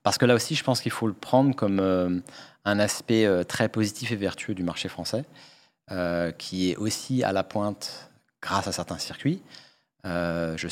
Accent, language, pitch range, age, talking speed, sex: French, French, 90-110 Hz, 40-59, 195 wpm, male